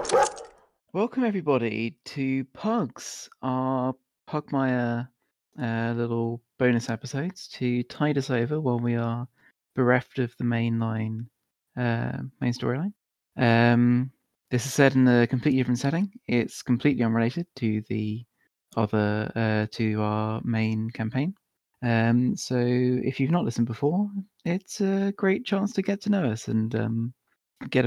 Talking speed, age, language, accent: 130 wpm, 30-49, English, British